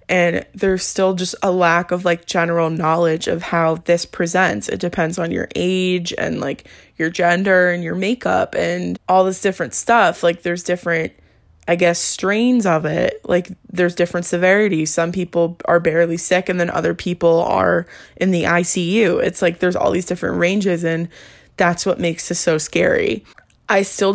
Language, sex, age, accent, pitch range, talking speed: English, female, 20-39, American, 170-185 Hz, 180 wpm